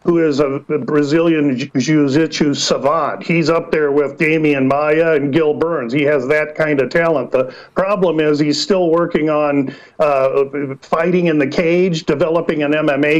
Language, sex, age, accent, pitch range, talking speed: English, male, 50-69, American, 150-175 Hz, 165 wpm